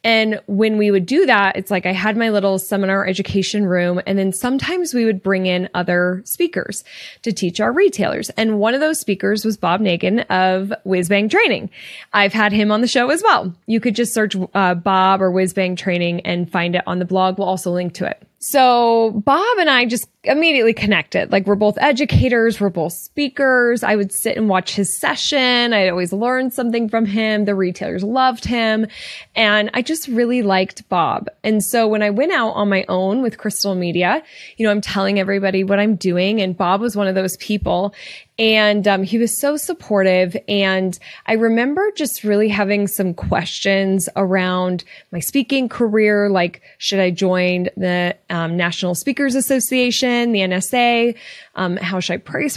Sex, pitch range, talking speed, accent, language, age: female, 185-235 Hz, 190 wpm, American, English, 10-29